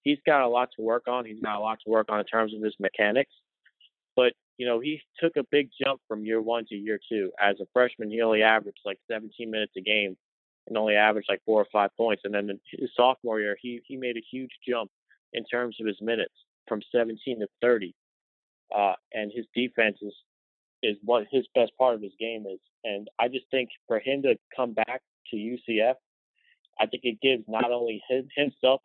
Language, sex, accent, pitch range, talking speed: English, male, American, 105-125 Hz, 220 wpm